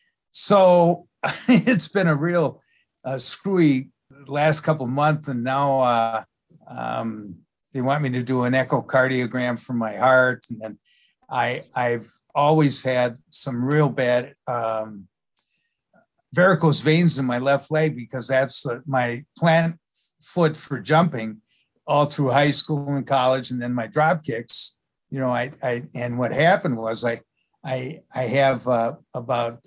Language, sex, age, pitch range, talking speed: English, male, 60-79, 120-150 Hz, 150 wpm